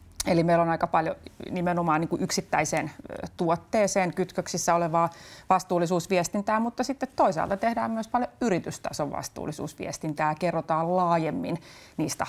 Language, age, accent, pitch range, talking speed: Finnish, 30-49, native, 155-180 Hz, 110 wpm